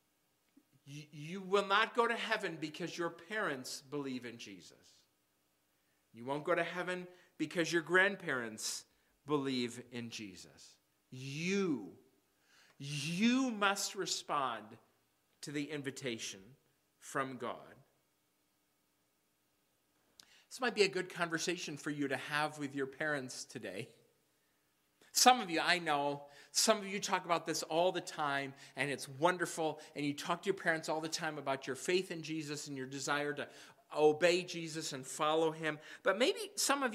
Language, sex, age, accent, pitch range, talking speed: English, male, 40-59, American, 130-180 Hz, 145 wpm